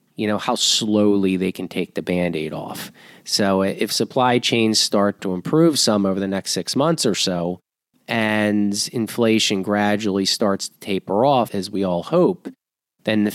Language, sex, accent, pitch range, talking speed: English, male, American, 100-120 Hz, 170 wpm